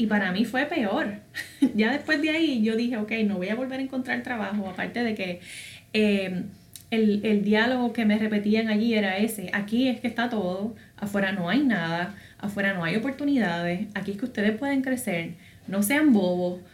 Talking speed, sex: 195 wpm, female